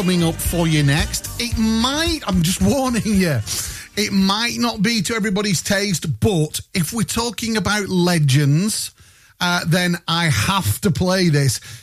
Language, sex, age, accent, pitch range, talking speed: English, male, 40-59, British, 135-200 Hz, 155 wpm